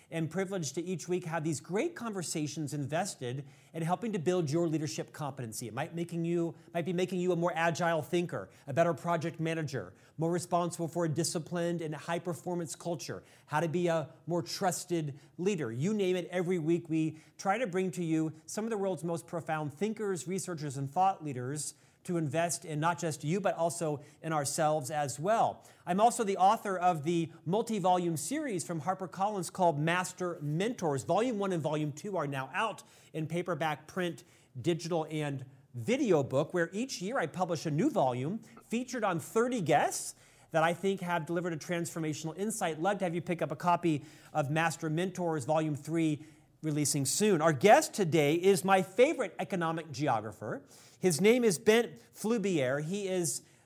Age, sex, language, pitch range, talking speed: 40-59, male, English, 155-185 Hz, 180 wpm